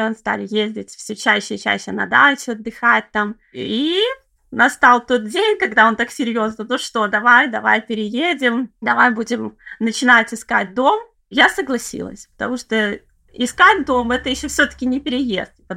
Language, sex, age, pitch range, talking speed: Russian, female, 20-39, 215-280 Hz, 155 wpm